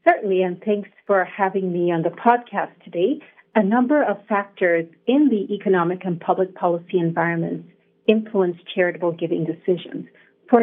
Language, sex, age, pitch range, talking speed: English, female, 50-69, 180-220 Hz, 145 wpm